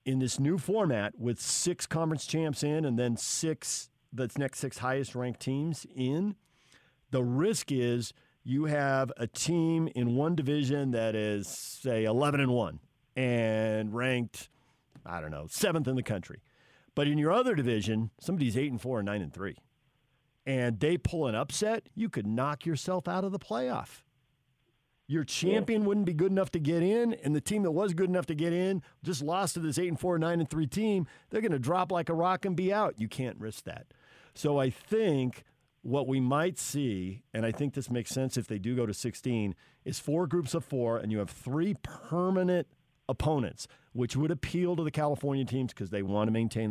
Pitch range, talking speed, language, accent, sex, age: 115-165 Hz, 200 wpm, English, American, male, 50-69